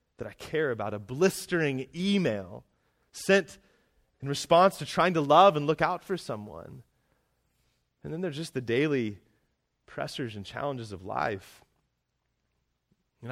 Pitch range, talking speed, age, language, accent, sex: 105-140 Hz, 140 wpm, 30-49, English, American, male